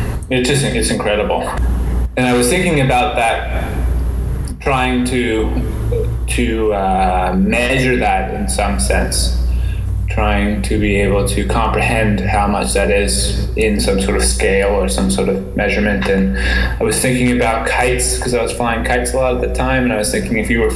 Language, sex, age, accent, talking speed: English, male, 20-39, American, 180 wpm